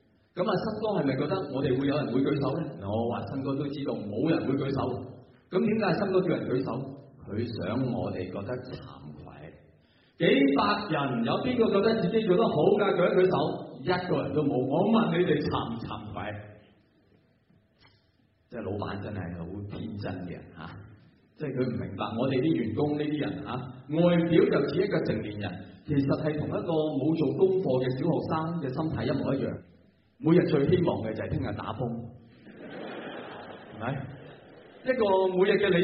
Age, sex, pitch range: 30-49, male, 115-175 Hz